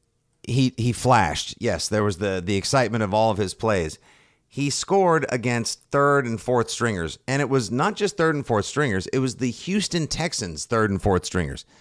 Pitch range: 105-140 Hz